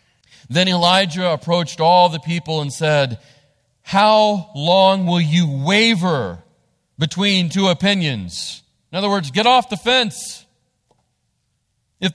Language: English